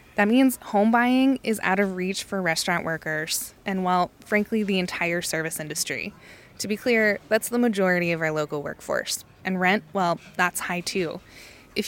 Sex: female